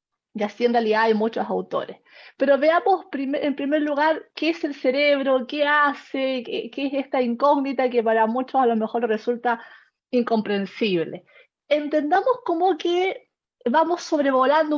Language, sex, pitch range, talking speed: Spanish, female, 230-290 Hz, 150 wpm